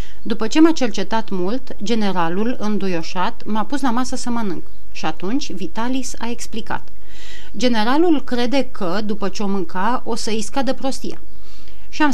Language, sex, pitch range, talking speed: Romanian, female, 180-245 Hz, 155 wpm